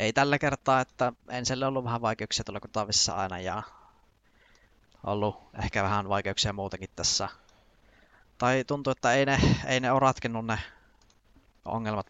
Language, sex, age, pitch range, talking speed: Finnish, male, 20-39, 100-115 Hz, 145 wpm